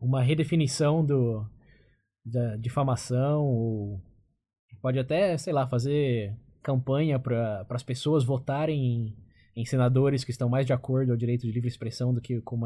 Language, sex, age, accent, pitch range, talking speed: Portuguese, male, 20-39, Brazilian, 120-150 Hz, 140 wpm